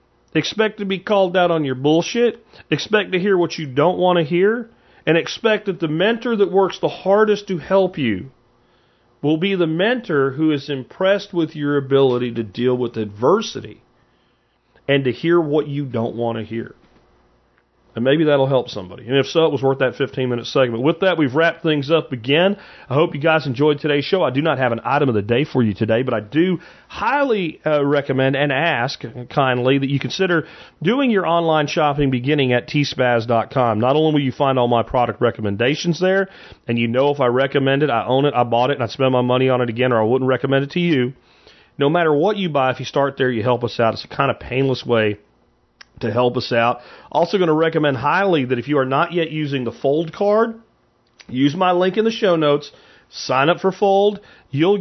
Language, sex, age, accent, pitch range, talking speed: English, male, 40-59, American, 125-170 Hz, 220 wpm